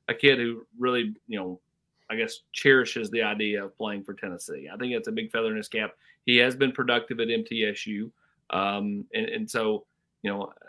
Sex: male